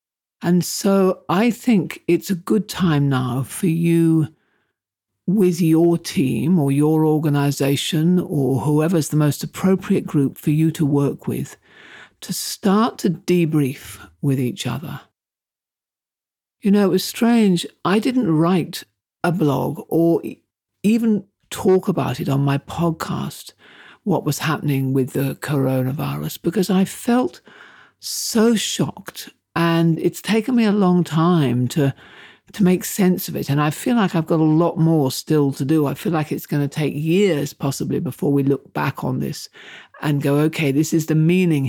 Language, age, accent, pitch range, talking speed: English, 60-79, British, 140-185 Hz, 160 wpm